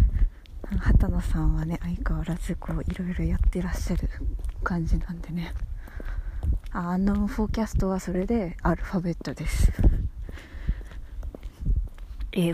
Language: Japanese